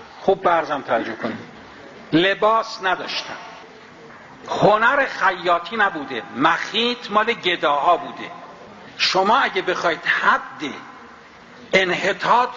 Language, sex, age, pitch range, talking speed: Persian, male, 60-79, 165-225 Hz, 85 wpm